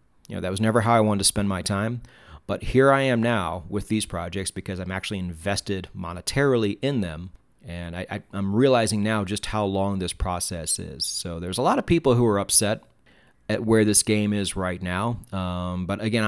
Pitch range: 90-115 Hz